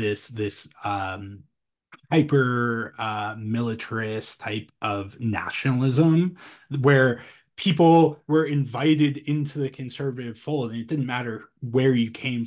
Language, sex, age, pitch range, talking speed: English, male, 20-39, 105-130 Hz, 115 wpm